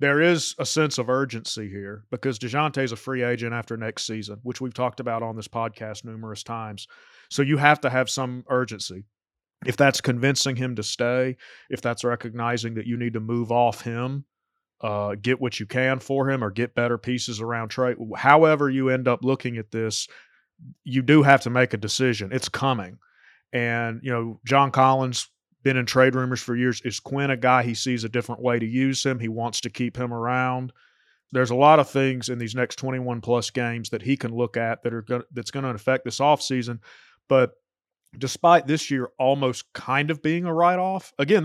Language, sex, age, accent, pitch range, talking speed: English, male, 30-49, American, 115-135 Hz, 210 wpm